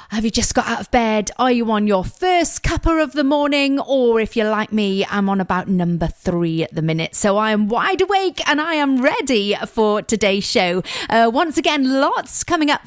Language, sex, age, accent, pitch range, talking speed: English, female, 40-59, British, 195-310 Hz, 220 wpm